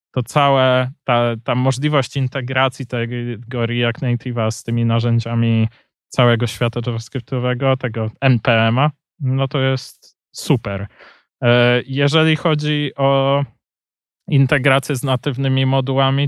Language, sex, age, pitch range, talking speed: Polish, male, 20-39, 120-140 Hz, 105 wpm